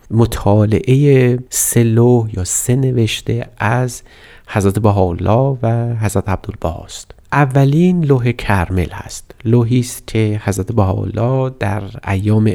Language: Persian